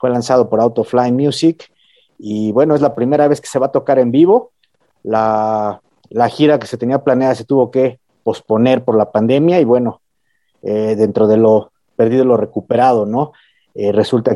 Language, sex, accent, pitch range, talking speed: Spanish, male, Mexican, 105-125 Hz, 185 wpm